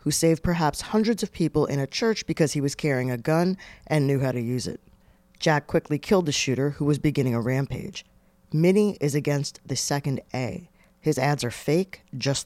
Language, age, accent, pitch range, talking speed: English, 40-59, American, 130-165 Hz, 200 wpm